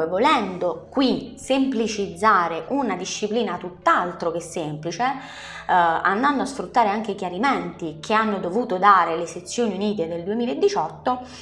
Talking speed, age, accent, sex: 125 wpm, 20-39, native, female